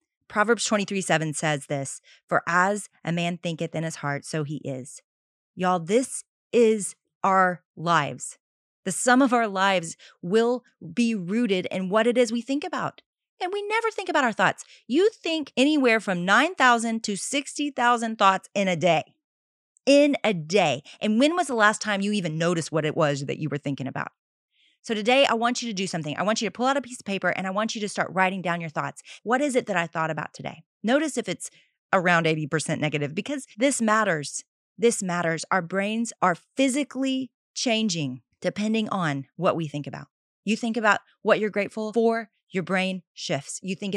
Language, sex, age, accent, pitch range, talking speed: English, female, 30-49, American, 170-235 Hz, 195 wpm